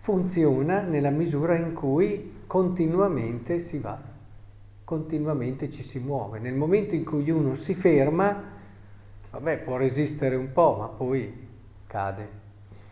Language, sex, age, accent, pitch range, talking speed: Italian, male, 50-69, native, 130-185 Hz, 125 wpm